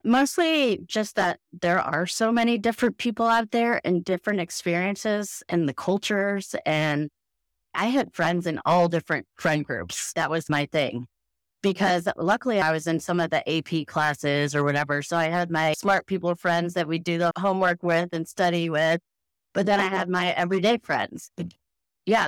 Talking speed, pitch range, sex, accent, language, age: 180 wpm, 145-195 Hz, female, American, English, 30-49